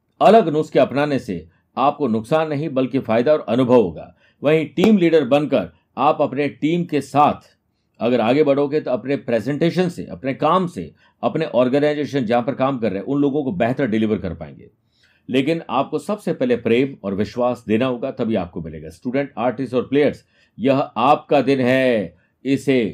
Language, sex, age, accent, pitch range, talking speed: Hindi, male, 50-69, native, 115-155 Hz, 175 wpm